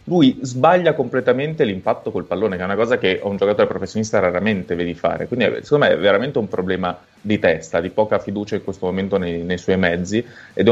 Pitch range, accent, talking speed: 90-100 Hz, native, 220 wpm